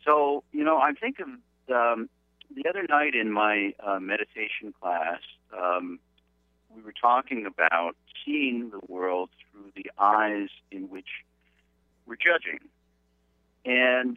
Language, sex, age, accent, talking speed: English, male, 50-69, American, 130 wpm